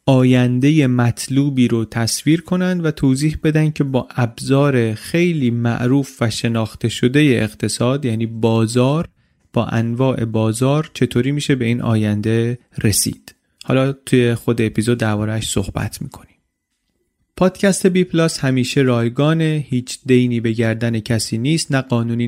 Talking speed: 125 wpm